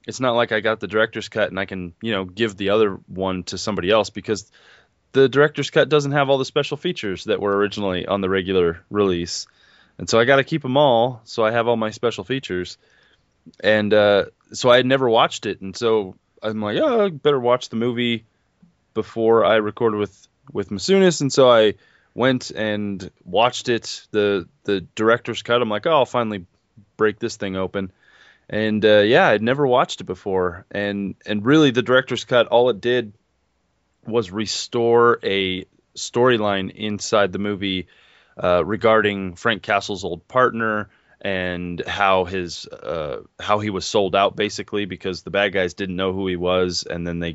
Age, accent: 20-39, American